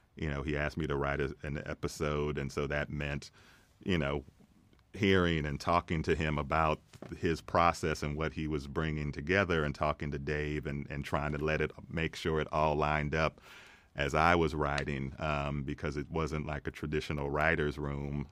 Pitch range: 70-80 Hz